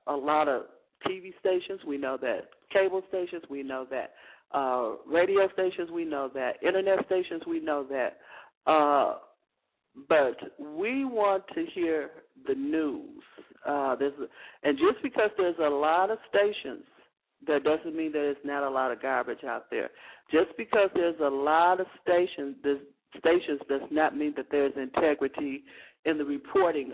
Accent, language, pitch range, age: American, English, 145-215 Hz, 50-69